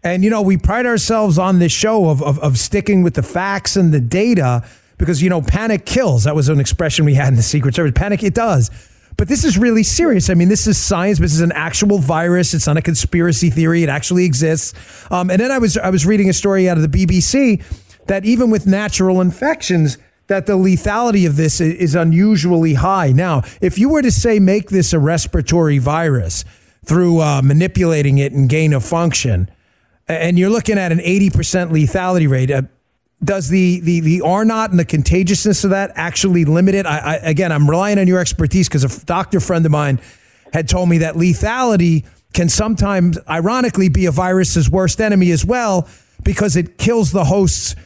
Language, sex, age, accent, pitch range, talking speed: English, male, 30-49, American, 150-195 Hz, 205 wpm